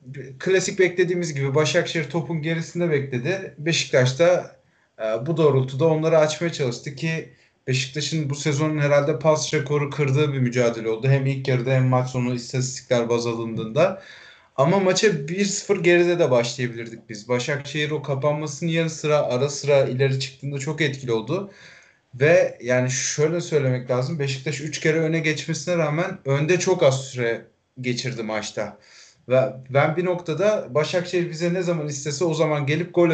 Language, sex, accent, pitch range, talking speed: Turkish, male, native, 130-165 Hz, 150 wpm